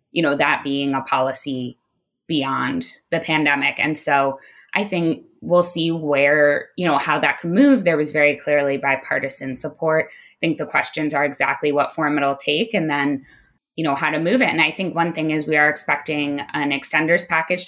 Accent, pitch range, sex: American, 140-160 Hz, female